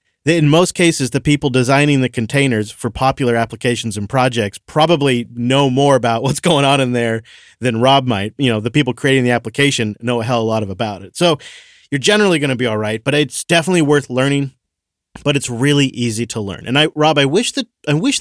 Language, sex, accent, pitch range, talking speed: English, male, American, 120-150 Hz, 225 wpm